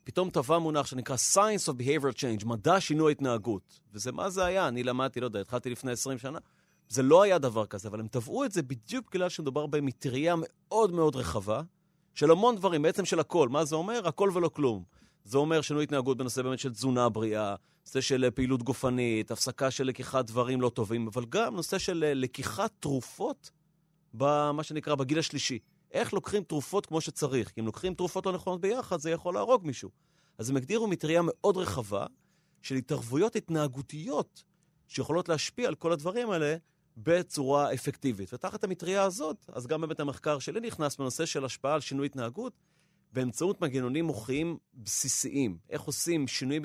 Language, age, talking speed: Hebrew, 30-49, 175 wpm